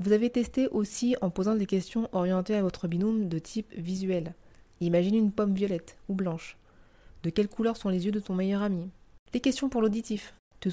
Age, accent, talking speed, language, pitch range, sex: 30-49, French, 200 wpm, French, 175-210 Hz, female